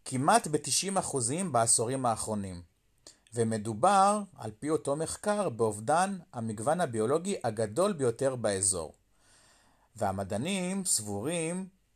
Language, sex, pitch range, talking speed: Hebrew, male, 105-140 Hz, 90 wpm